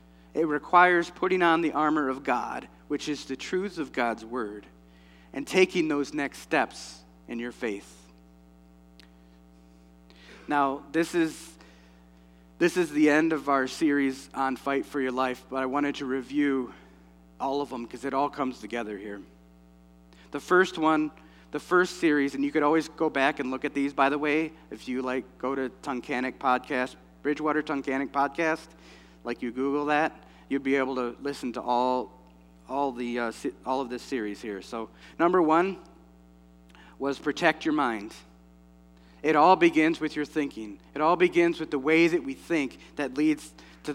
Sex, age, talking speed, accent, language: male, 40-59, 170 wpm, American, English